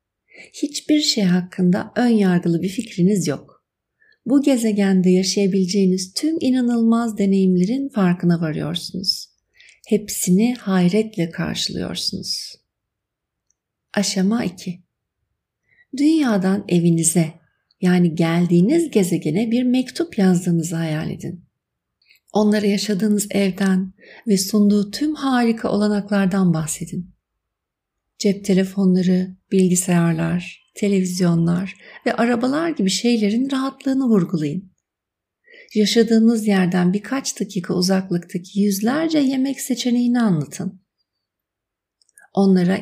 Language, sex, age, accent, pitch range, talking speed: Turkish, female, 60-79, native, 180-225 Hz, 85 wpm